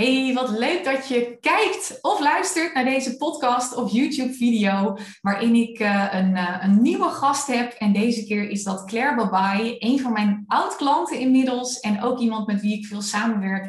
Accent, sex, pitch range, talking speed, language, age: Dutch, female, 205-260 Hz, 185 wpm, Dutch, 20-39